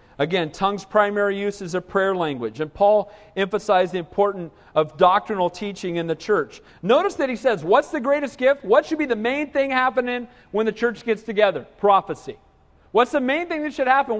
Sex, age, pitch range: male, 40-59, 200-265 Hz